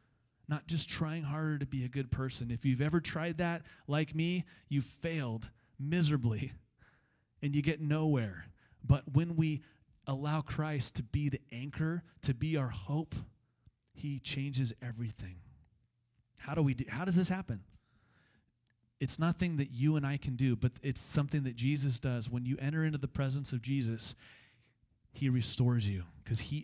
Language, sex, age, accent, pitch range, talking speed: English, male, 30-49, American, 120-150 Hz, 165 wpm